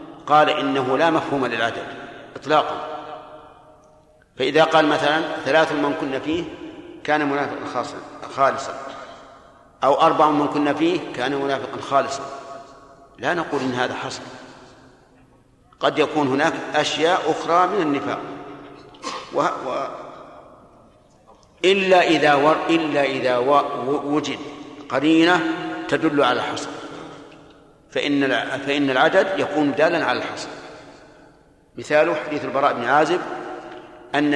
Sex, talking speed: male, 110 wpm